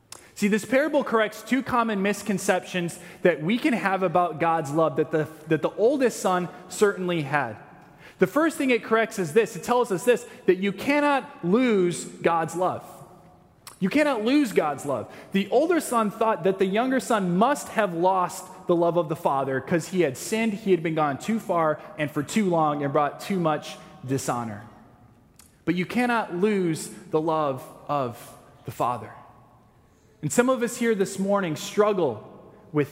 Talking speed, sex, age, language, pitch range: 175 wpm, male, 20-39, English, 150-220 Hz